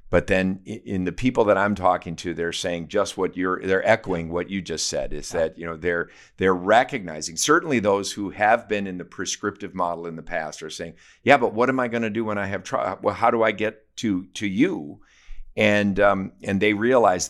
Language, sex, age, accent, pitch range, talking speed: English, male, 50-69, American, 90-105 Hz, 225 wpm